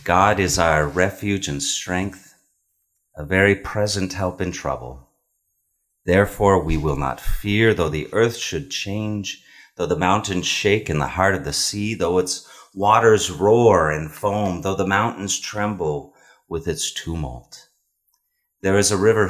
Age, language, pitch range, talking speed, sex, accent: 30-49, English, 90-115 Hz, 150 wpm, male, American